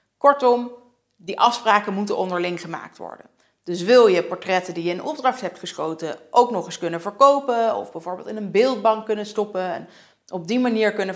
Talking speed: 185 wpm